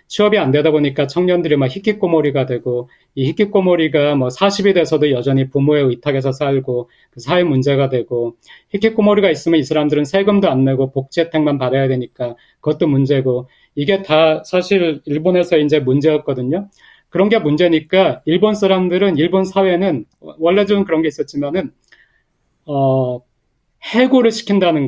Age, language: 40-59, Korean